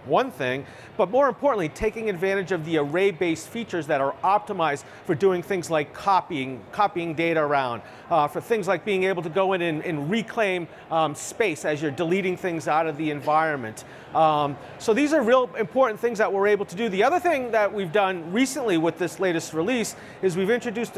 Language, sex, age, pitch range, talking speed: English, male, 40-59, 160-205 Hz, 205 wpm